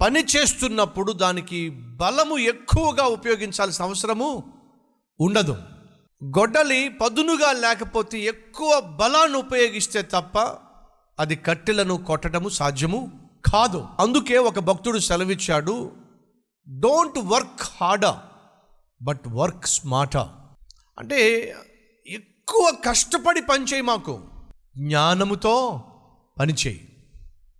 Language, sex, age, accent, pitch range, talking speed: Telugu, male, 50-69, native, 150-245 Hz, 85 wpm